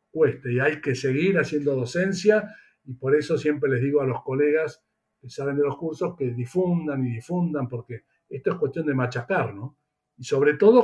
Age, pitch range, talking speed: 60-79, 130-175 Hz, 195 wpm